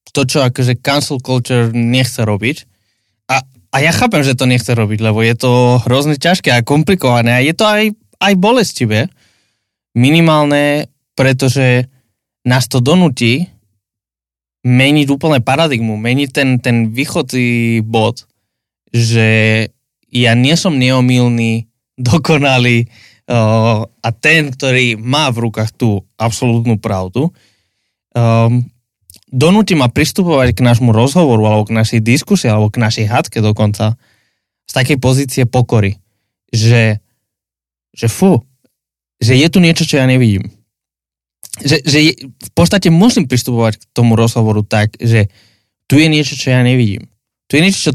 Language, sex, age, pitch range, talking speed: Slovak, male, 20-39, 110-135 Hz, 135 wpm